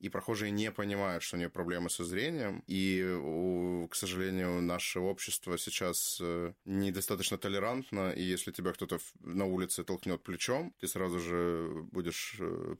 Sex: male